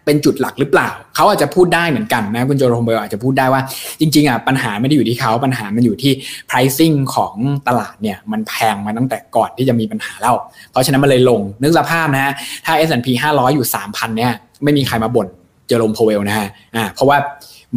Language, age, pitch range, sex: Thai, 20-39, 120-145 Hz, male